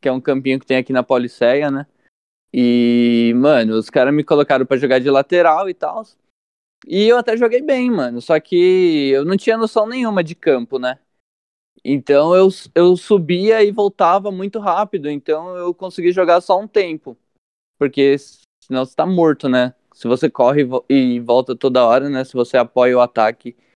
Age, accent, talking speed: 10-29, Brazilian, 180 wpm